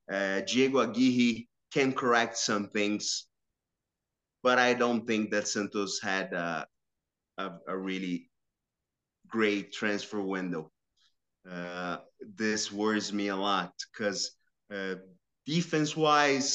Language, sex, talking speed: English, male, 105 wpm